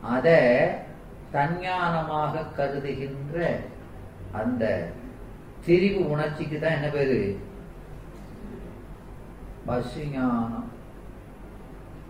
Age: 40-59